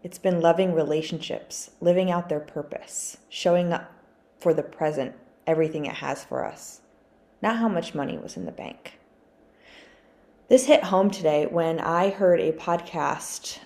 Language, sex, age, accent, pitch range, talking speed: English, female, 20-39, American, 155-210 Hz, 155 wpm